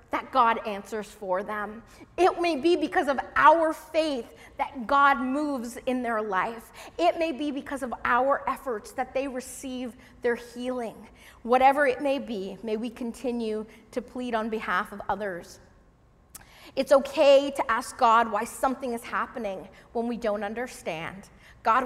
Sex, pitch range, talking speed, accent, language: female, 205-260 Hz, 155 wpm, American, English